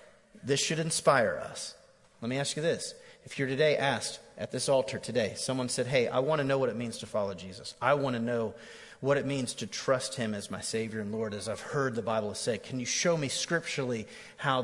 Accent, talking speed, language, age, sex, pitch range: American, 235 wpm, English, 30-49, male, 120-150 Hz